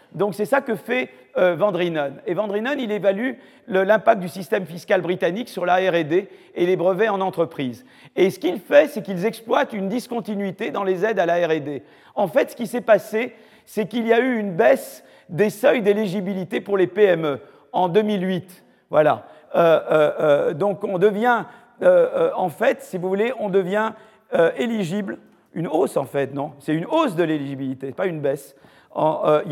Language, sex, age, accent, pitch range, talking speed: French, male, 40-59, French, 170-220 Hz, 190 wpm